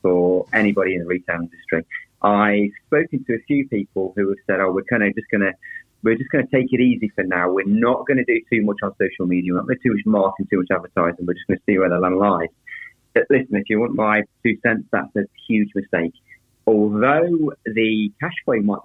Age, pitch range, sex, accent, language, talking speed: 30-49, 95-135 Hz, male, British, English, 250 wpm